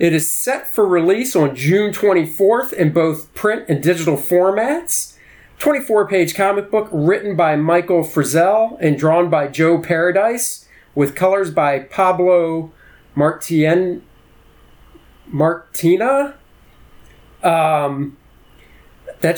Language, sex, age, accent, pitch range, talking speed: English, male, 40-59, American, 155-205 Hz, 105 wpm